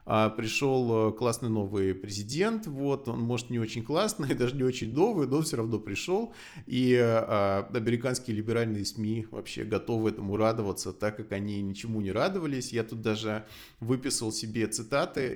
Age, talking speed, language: 20-39, 150 wpm, Russian